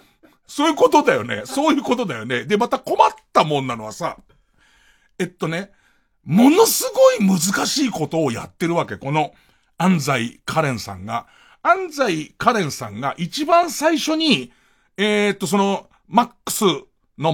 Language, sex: Japanese, male